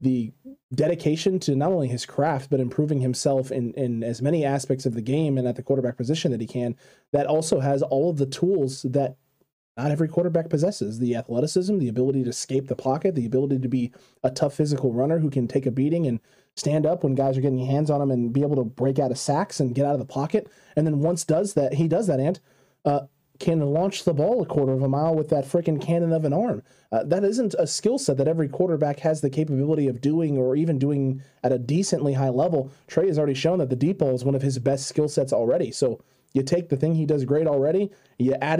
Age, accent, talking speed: 20-39, American, 245 wpm